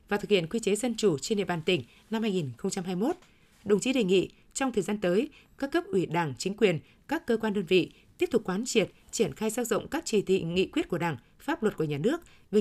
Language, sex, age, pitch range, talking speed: Vietnamese, female, 20-39, 185-235 Hz, 270 wpm